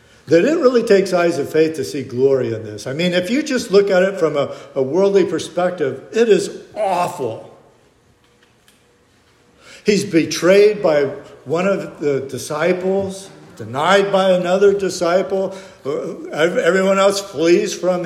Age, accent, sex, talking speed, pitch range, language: 60-79, American, male, 145 wpm, 145-205 Hz, English